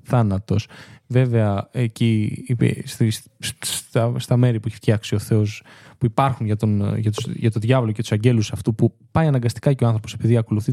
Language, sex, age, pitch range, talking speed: Greek, male, 20-39, 110-135 Hz, 190 wpm